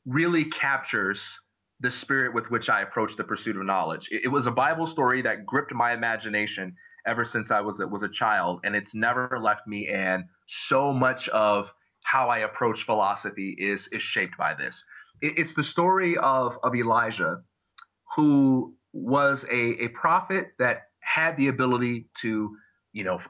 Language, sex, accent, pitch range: English, male, American, 115-165 Hz